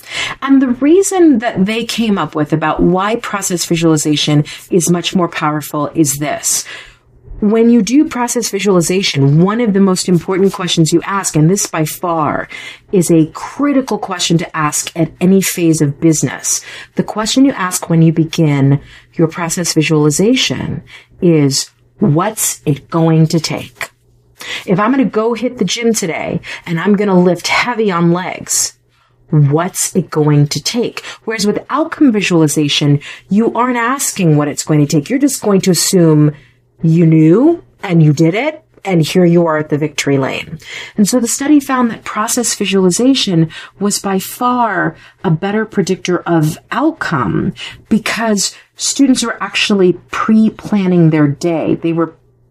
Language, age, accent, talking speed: English, 40-59, American, 160 wpm